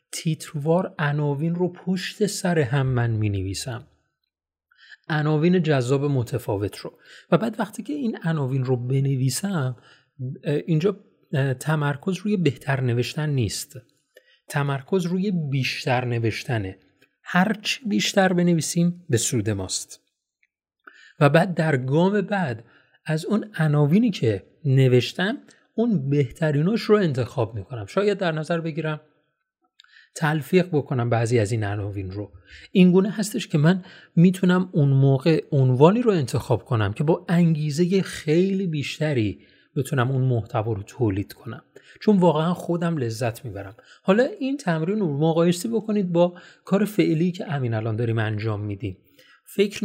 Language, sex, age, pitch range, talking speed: Persian, male, 30-49, 120-180 Hz, 130 wpm